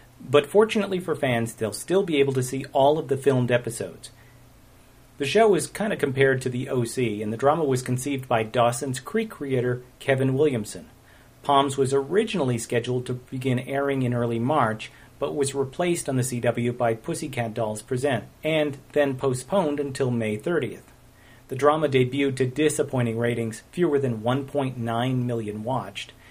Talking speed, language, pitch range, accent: 165 wpm, English, 120-140 Hz, American